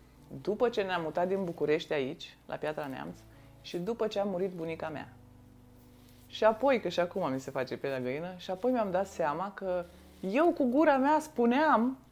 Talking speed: 195 wpm